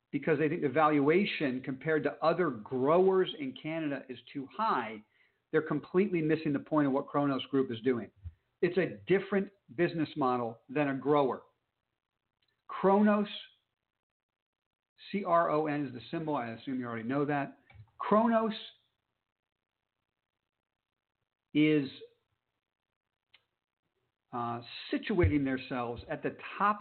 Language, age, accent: English, 50-69, American